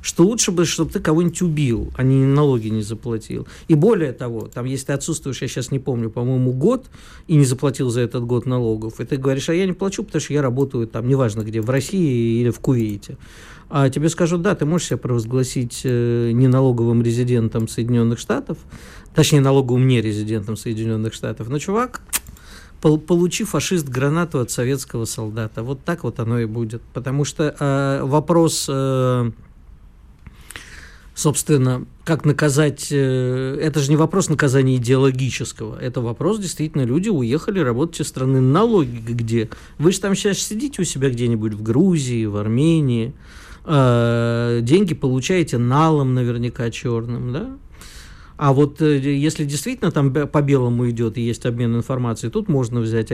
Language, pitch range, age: Russian, 115-155 Hz, 50-69